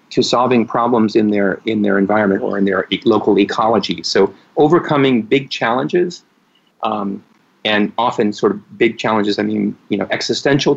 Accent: American